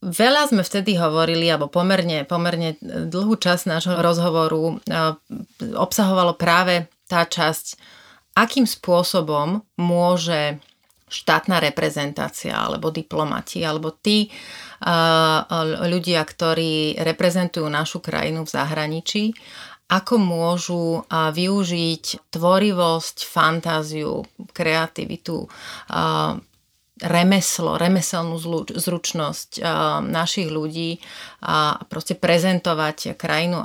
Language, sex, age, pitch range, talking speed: Slovak, female, 30-49, 160-190 Hz, 85 wpm